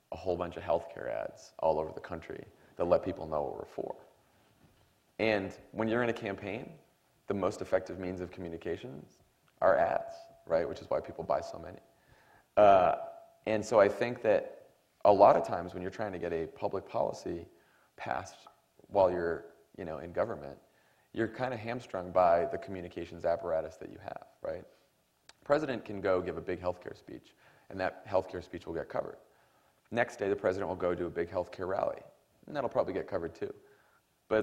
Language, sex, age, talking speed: English, male, 30-49, 190 wpm